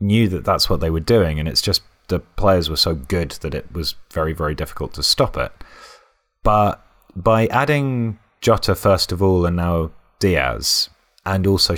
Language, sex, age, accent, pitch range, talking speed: English, male, 30-49, British, 80-95 Hz, 185 wpm